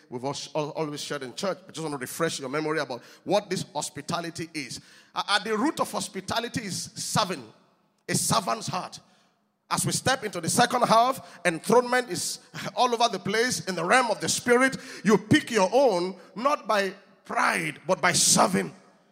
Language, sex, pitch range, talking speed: English, male, 195-275 Hz, 175 wpm